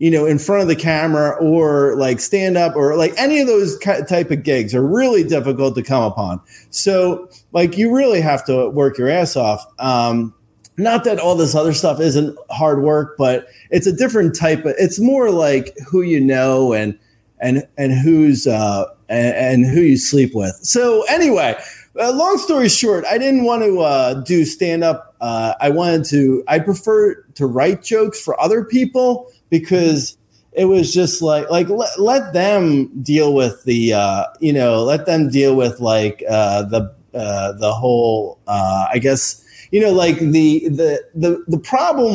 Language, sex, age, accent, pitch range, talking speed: English, male, 30-49, American, 125-185 Hz, 185 wpm